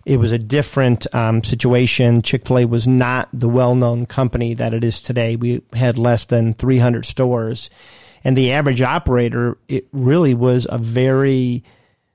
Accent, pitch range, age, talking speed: American, 120-135 Hz, 40-59, 170 wpm